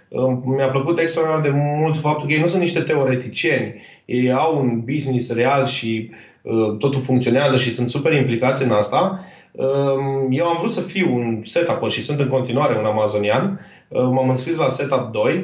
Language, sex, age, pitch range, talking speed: Romanian, male, 30-49, 130-170 Hz, 180 wpm